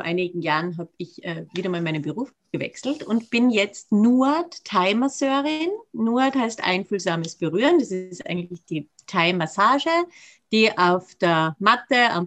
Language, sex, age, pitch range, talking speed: German, female, 30-49, 185-240 Hz, 140 wpm